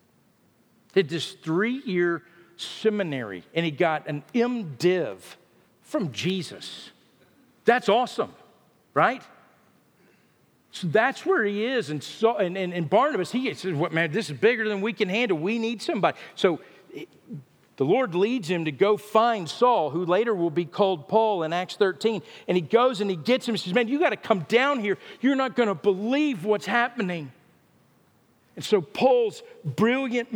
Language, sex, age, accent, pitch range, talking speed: English, male, 50-69, American, 150-215 Hz, 170 wpm